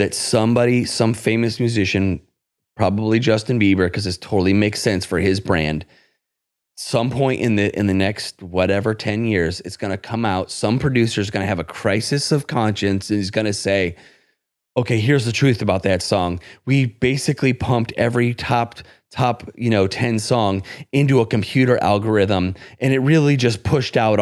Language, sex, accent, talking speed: English, male, American, 180 wpm